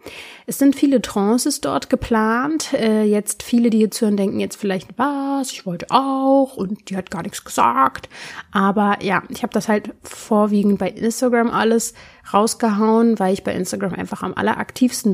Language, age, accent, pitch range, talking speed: German, 30-49, German, 195-230 Hz, 165 wpm